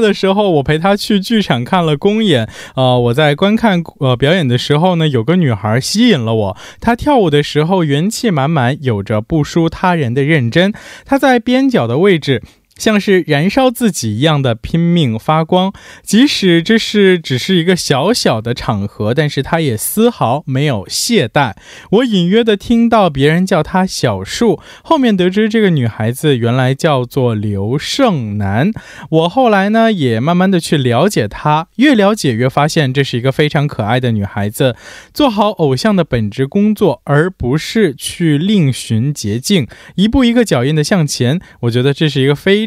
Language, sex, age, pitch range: Korean, male, 20-39, 130-200 Hz